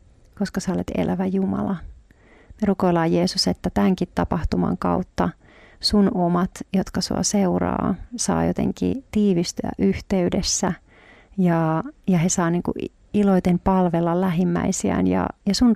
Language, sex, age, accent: Finnish, female, 40-59, native